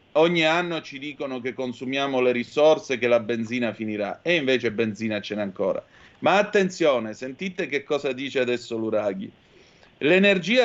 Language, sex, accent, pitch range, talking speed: Italian, male, native, 115-165 Hz, 150 wpm